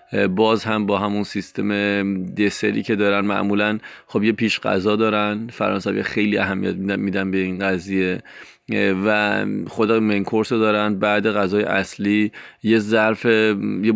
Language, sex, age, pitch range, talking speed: Persian, male, 30-49, 95-105 Hz, 145 wpm